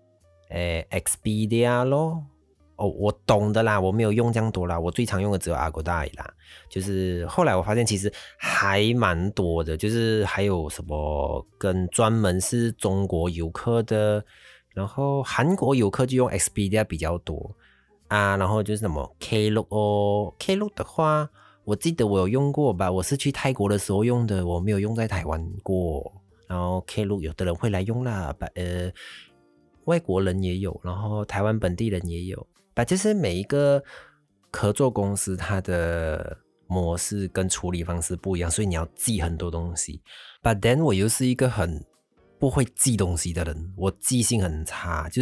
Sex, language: male, Chinese